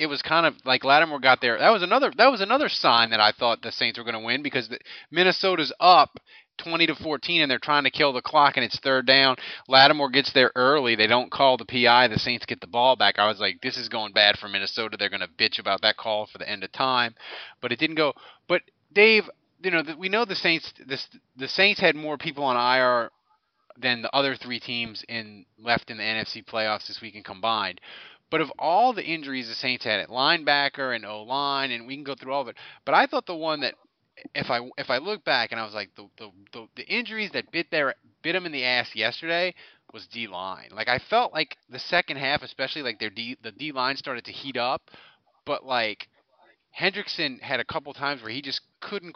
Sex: male